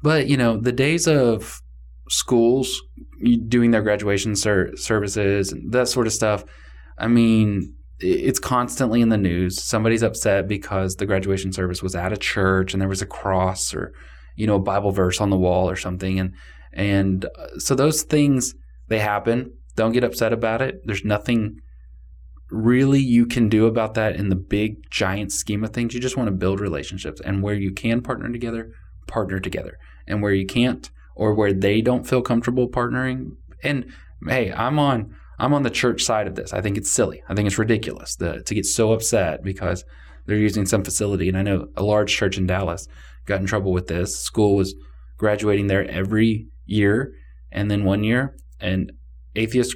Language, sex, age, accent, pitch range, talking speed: English, male, 20-39, American, 90-115 Hz, 185 wpm